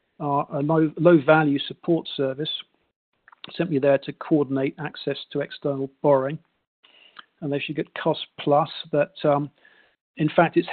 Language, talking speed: English, 140 wpm